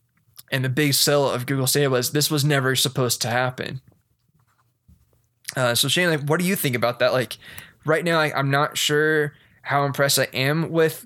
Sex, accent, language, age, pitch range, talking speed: male, American, English, 20-39, 125-150 Hz, 195 wpm